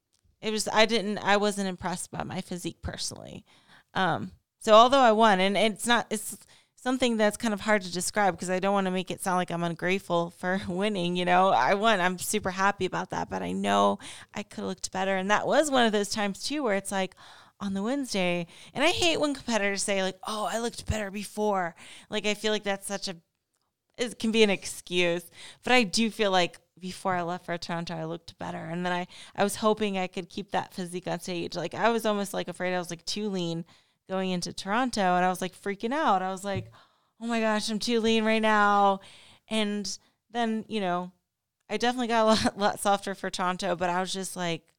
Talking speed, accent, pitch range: 230 wpm, American, 180-215 Hz